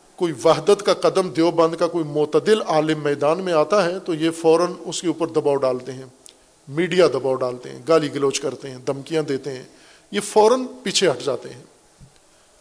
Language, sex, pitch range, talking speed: Urdu, male, 145-180 Hz, 185 wpm